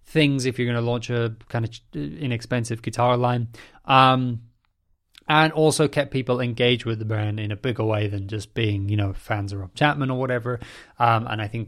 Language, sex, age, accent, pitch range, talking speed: English, male, 20-39, British, 110-130 Hz, 205 wpm